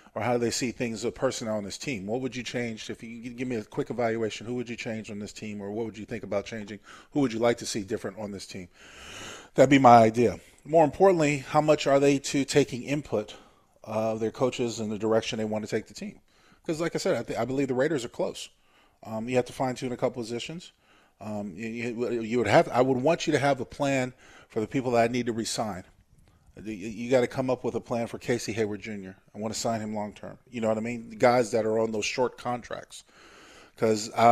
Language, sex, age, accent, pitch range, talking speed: English, male, 40-59, American, 110-135 Hz, 250 wpm